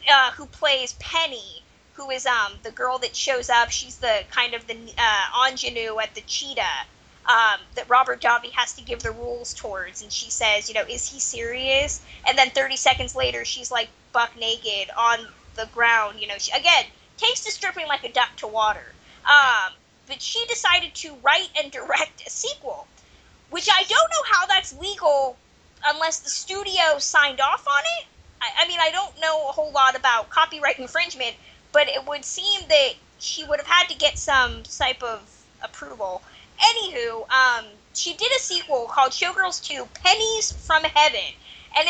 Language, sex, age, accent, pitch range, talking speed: English, female, 20-39, American, 250-370 Hz, 180 wpm